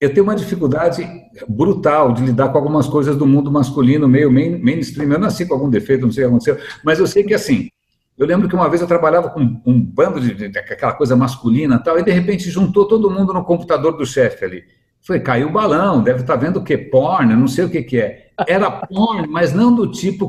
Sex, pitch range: male, 140-200 Hz